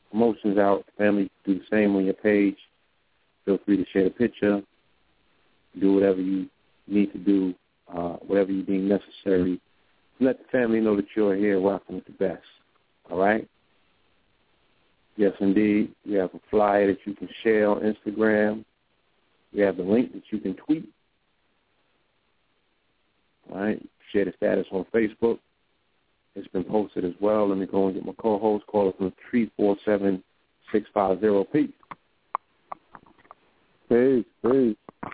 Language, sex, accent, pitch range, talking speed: English, male, American, 95-110 Hz, 155 wpm